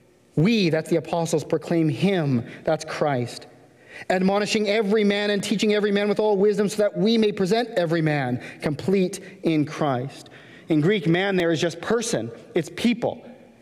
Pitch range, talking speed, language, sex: 145-195 Hz, 165 wpm, English, male